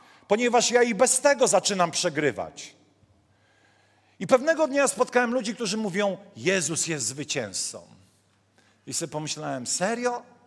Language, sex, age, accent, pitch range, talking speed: Polish, male, 40-59, native, 175-230 Hz, 120 wpm